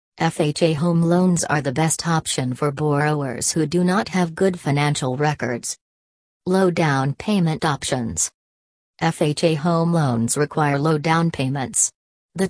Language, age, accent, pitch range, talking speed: English, 40-59, American, 145-175 Hz, 135 wpm